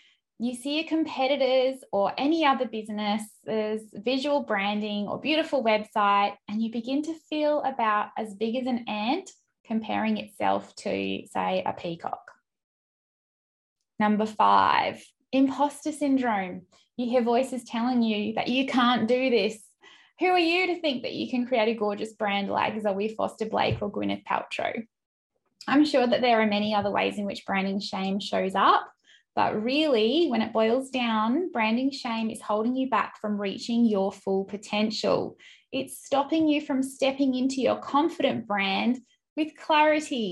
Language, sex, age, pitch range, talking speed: English, female, 10-29, 210-270 Hz, 155 wpm